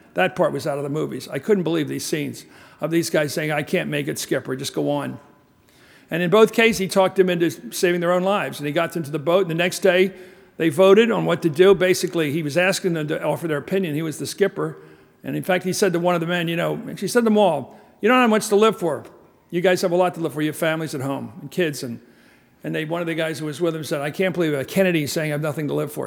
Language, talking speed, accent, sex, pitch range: English, 295 wpm, American, male, 160-195 Hz